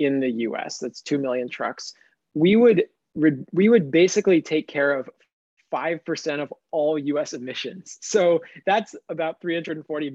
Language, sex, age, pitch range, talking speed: English, male, 20-39, 135-160 Hz, 135 wpm